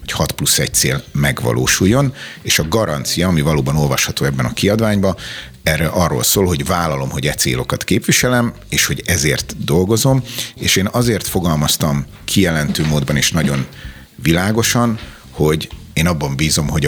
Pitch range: 70-100 Hz